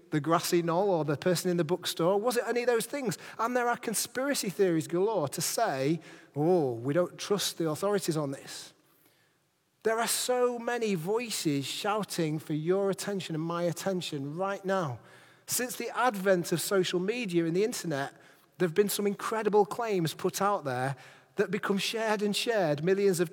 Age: 30-49